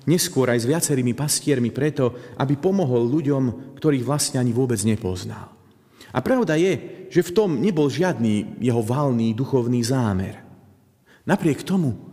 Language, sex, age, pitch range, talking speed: Slovak, male, 40-59, 115-145 Hz, 140 wpm